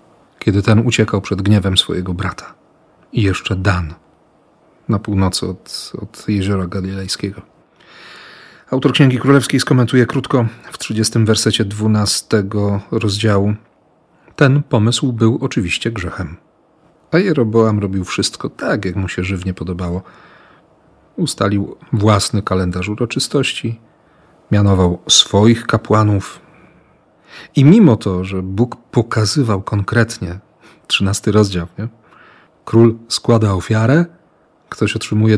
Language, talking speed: Polish, 105 wpm